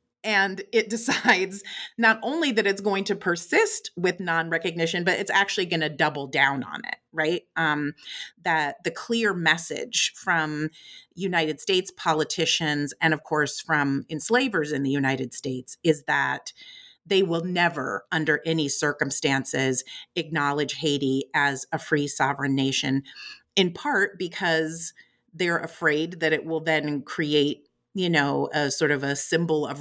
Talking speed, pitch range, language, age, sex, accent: 145 wpm, 140-170 Hz, English, 30-49, female, American